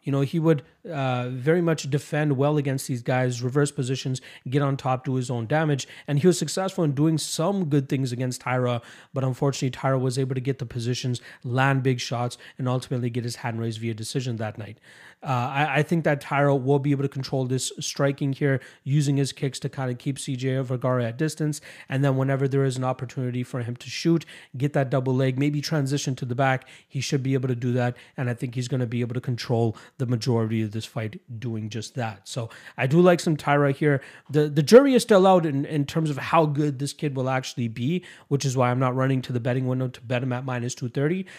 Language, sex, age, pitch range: English, male, 30-49, 125-145 Hz